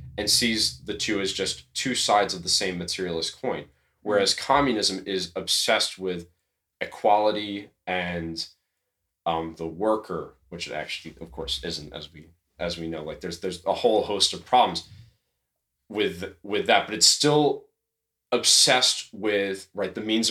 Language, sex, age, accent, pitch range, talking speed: English, male, 30-49, American, 75-110 Hz, 155 wpm